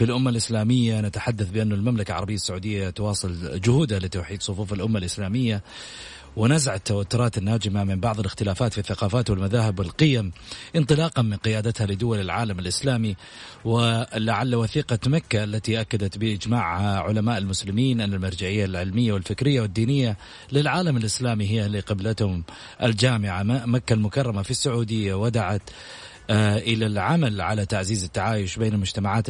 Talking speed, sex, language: 125 wpm, male, Arabic